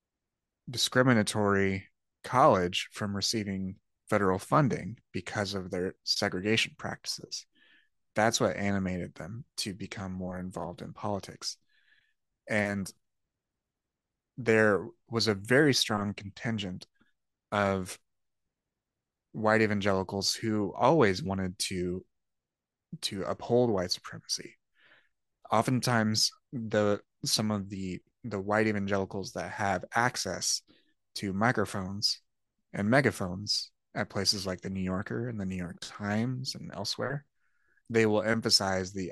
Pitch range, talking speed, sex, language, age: 95-110 Hz, 110 wpm, male, English, 30-49